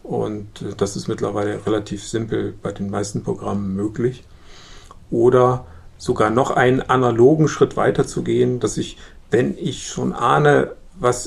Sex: male